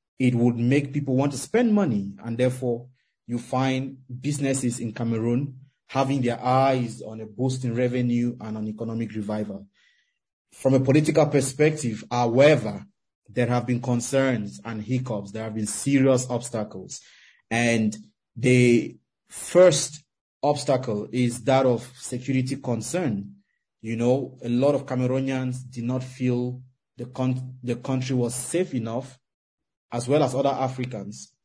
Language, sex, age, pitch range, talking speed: English, male, 30-49, 115-135 Hz, 140 wpm